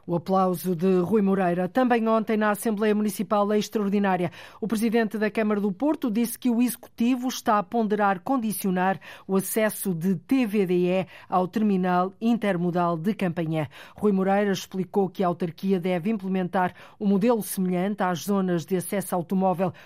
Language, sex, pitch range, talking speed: Portuguese, female, 180-215 Hz, 155 wpm